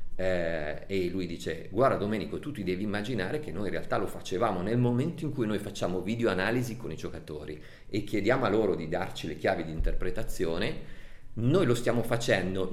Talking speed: 195 wpm